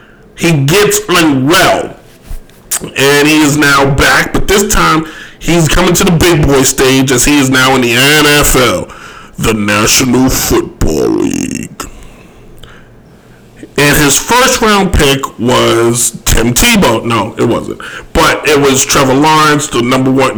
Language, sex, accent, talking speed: English, male, American, 140 wpm